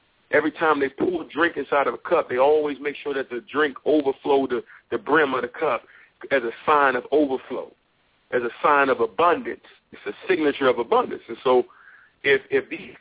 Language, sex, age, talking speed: English, male, 40-59, 205 wpm